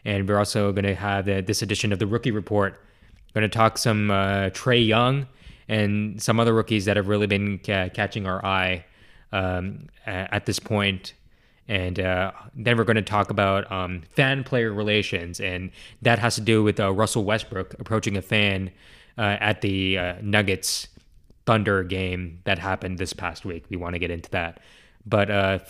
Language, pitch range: English, 95-115 Hz